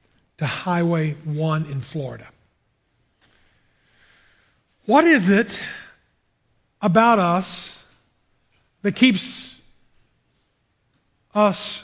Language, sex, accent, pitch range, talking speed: English, male, American, 185-245 Hz, 65 wpm